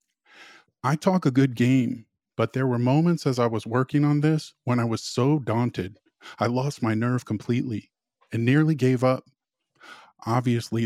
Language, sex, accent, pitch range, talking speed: English, male, American, 110-135 Hz, 165 wpm